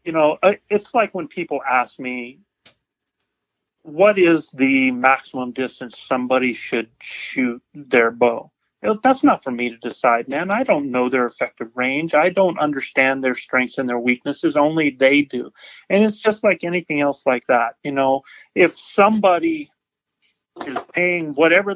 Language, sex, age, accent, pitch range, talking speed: English, male, 40-59, American, 135-180 Hz, 155 wpm